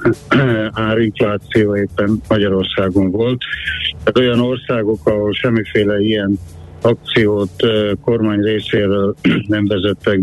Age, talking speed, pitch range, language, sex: 60-79, 80 wpm, 100-120 Hz, Hungarian, male